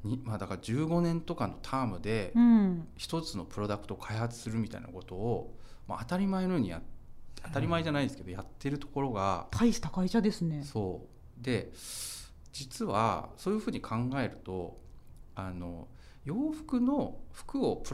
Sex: male